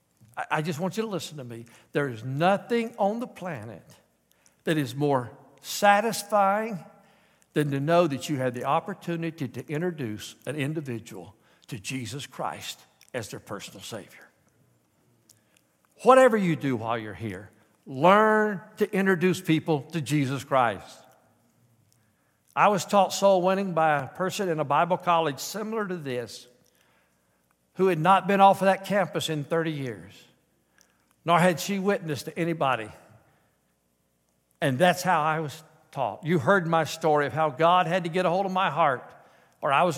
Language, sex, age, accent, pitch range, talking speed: English, male, 60-79, American, 105-175 Hz, 160 wpm